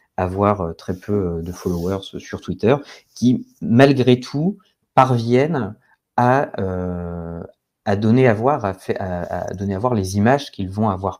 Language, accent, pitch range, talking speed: French, French, 95-110 Hz, 155 wpm